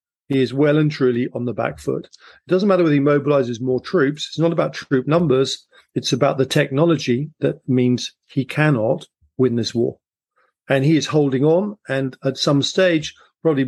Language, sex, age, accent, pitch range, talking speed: English, male, 40-59, British, 125-150 Hz, 190 wpm